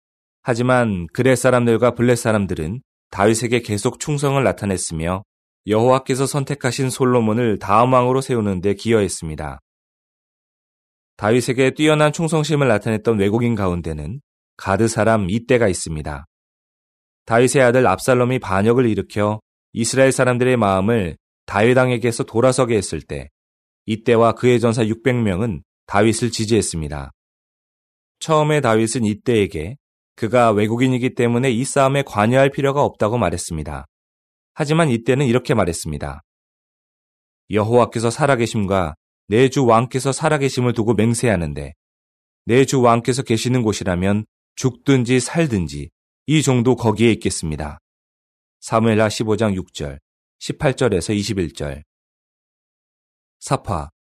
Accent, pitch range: native, 85-125 Hz